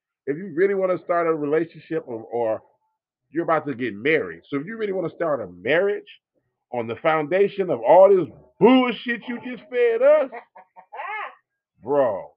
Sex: male